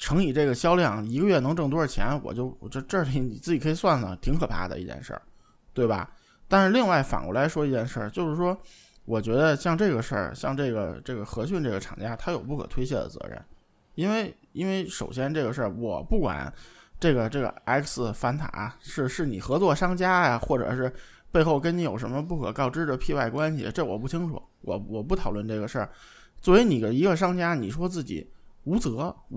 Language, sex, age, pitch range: Chinese, male, 20-39, 120-175 Hz